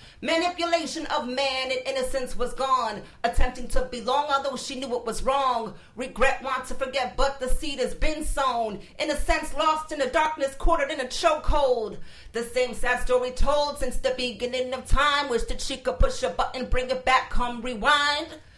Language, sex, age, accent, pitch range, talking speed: English, female, 40-59, American, 250-300 Hz, 190 wpm